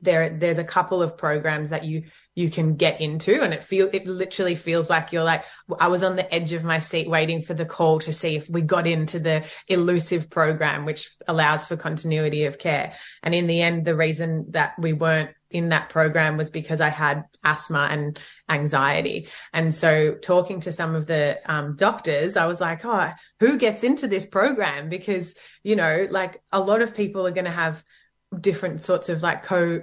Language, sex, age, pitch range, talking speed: English, female, 20-39, 160-180 Hz, 205 wpm